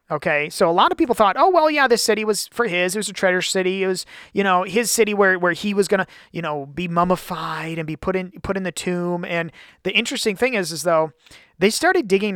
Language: English